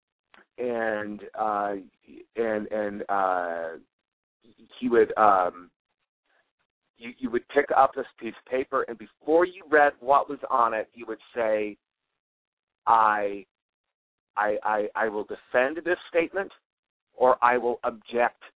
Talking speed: 135 wpm